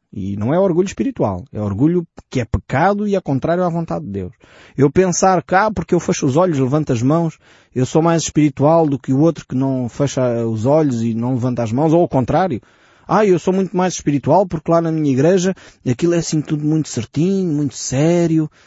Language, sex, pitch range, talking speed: Portuguese, male, 135-180 Hz, 220 wpm